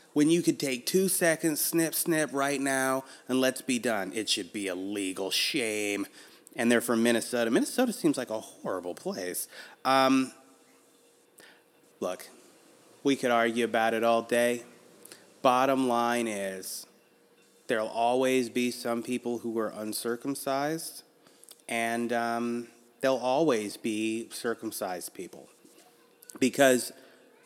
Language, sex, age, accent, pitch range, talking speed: English, male, 30-49, American, 115-150 Hz, 125 wpm